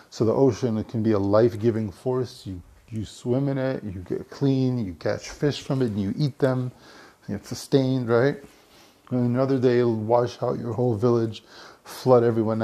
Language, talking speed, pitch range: English, 195 wpm, 110-135 Hz